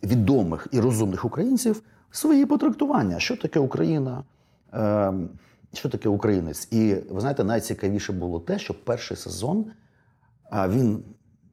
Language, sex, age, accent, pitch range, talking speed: Ukrainian, male, 30-49, native, 95-130 Hz, 115 wpm